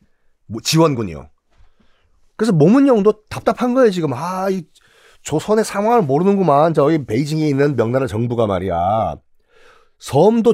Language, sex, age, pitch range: Korean, male, 40-59, 140-215 Hz